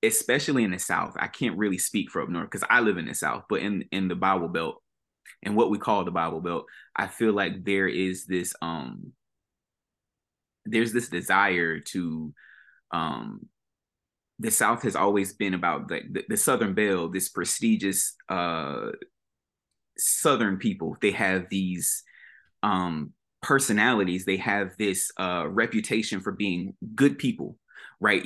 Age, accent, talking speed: 20-39, American, 155 wpm